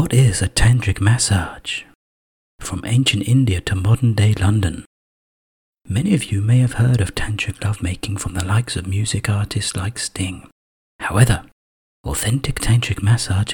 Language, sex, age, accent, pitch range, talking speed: English, male, 40-59, British, 95-125 Hz, 145 wpm